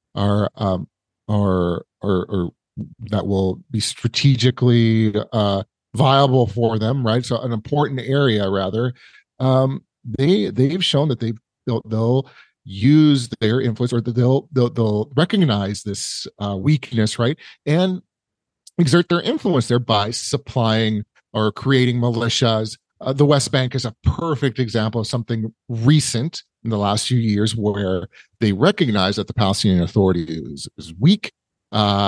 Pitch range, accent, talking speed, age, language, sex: 110-150 Hz, American, 140 wpm, 40-59, English, male